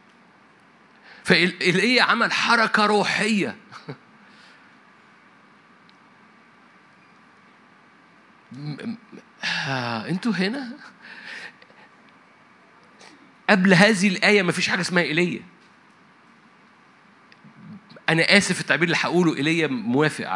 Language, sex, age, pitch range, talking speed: Arabic, male, 50-69, 170-225 Hz, 70 wpm